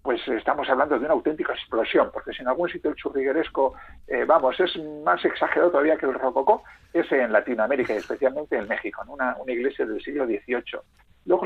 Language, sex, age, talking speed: Spanish, male, 50-69, 200 wpm